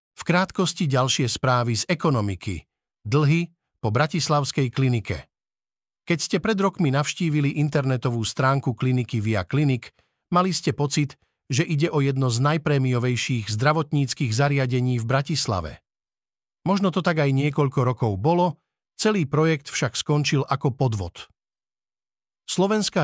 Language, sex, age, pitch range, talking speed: Slovak, male, 50-69, 125-155 Hz, 120 wpm